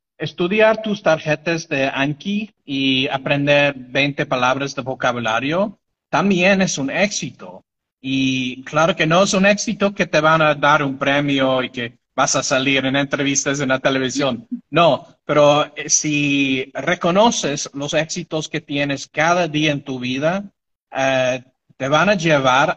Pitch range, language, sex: 135-160 Hz, Spanish, male